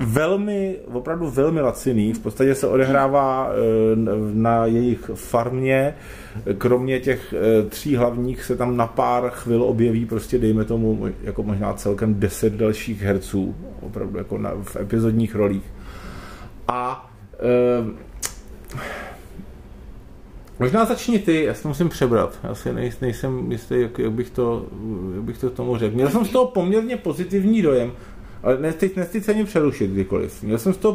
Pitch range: 115-165 Hz